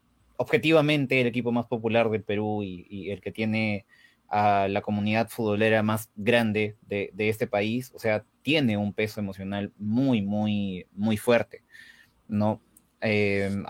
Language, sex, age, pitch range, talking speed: Spanish, male, 20-39, 105-125 Hz, 150 wpm